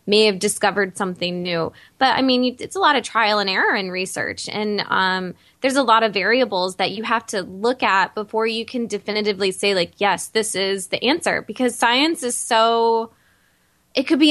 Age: 10-29